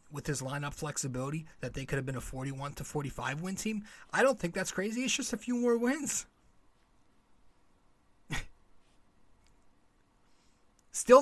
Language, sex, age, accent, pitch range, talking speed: English, male, 30-49, American, 150-205 Hz, 140 wpm